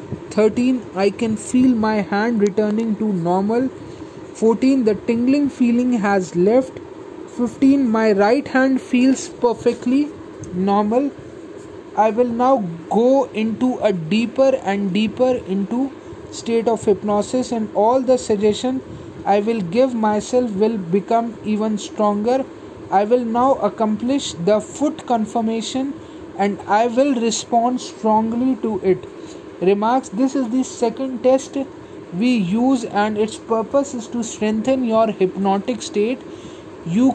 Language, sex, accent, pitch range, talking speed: Hindi, male, native, 210-260 Hz, 130 wpm